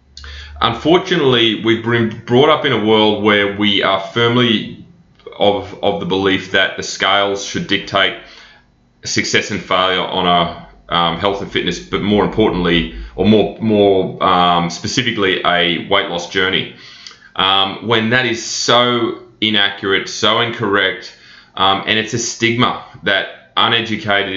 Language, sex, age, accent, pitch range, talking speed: English, male, 20-39, Australian, 95-120 Hz, 140 wpm